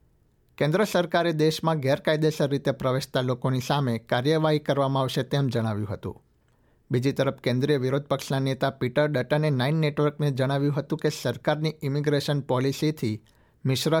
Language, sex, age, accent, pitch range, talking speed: Gujarati, male, 60-79, native, 125-150 Hz, 135 wpm